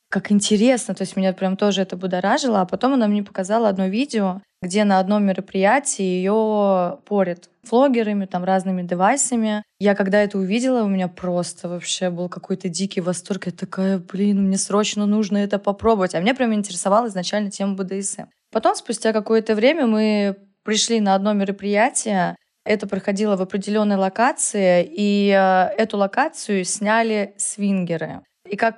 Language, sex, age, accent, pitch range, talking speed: Russian, female, 20-39, native, 190-215 Hz, 155 wpm